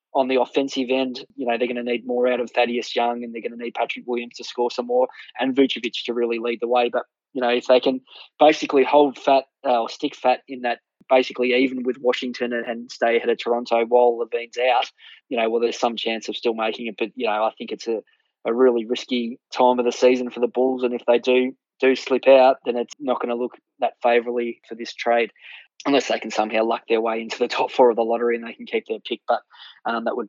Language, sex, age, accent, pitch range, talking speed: English, male, 20-39, Australian, 115-125 Hz, 260 wpm